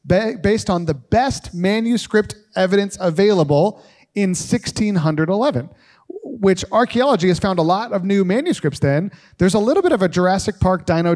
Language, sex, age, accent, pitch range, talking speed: English, male, 30-49, American, 160-200 Hz, 150 wpm